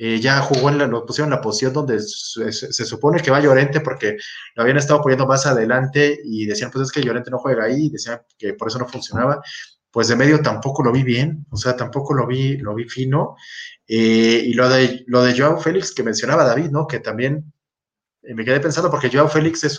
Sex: male